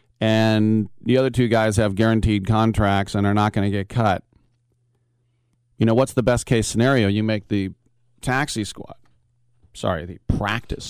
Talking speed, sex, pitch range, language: 160 wpm, male, 100-120 Hz, English